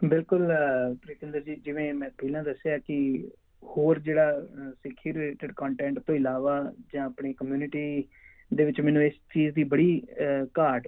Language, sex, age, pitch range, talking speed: Punjabi, male, 20-39, 125-145 Hz, 145 wpm